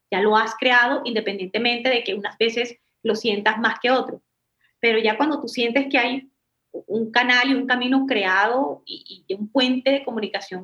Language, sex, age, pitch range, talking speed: Spanish, female, 20-39, 210-255 Hz, 185 wpm